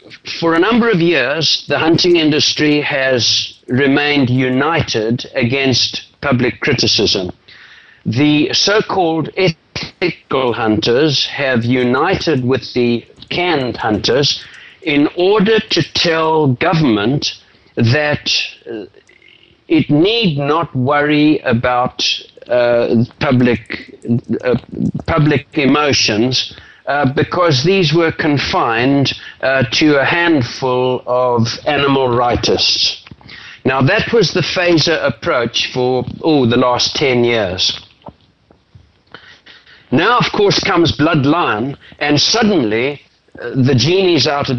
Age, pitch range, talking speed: 60-79, 125-165 Hz, 100 wpm